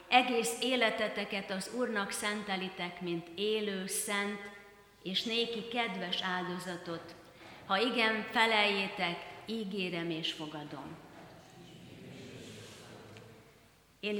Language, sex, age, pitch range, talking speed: Hungarian, female, 30-49, 175-205 Hz, 80 wpm